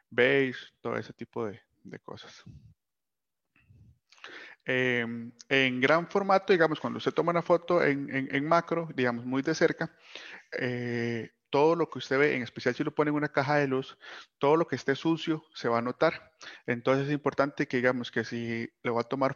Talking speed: 190 wpm